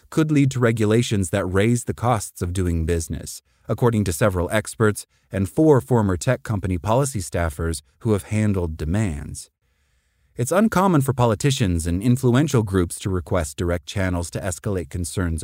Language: English